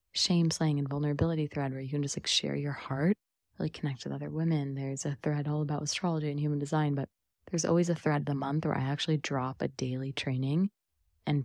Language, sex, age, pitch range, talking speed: English, female, 20-39, 130-155 Hz, 220 wpm